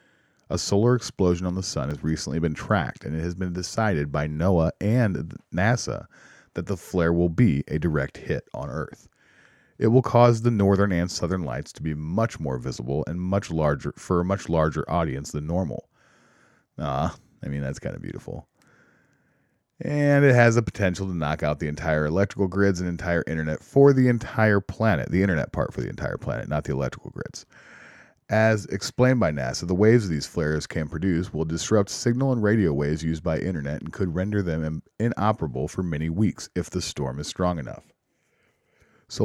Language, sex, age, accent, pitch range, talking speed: English, male, 30-49, American, 80-110 Hz, 190 wpm